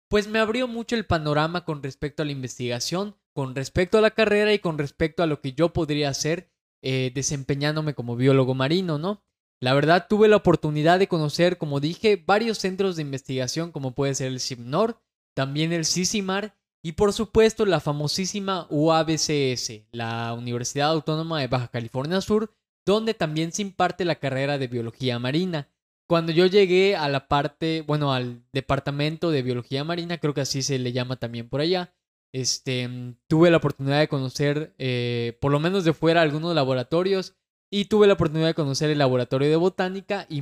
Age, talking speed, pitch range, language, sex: 20-39, 180 wpm, 135-180 Hz, Spanish, male